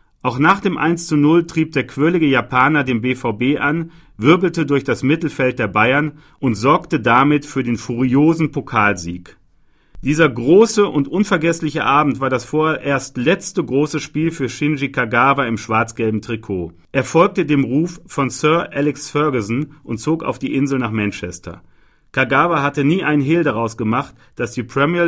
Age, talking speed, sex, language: 40-59, 160 wpm, male, German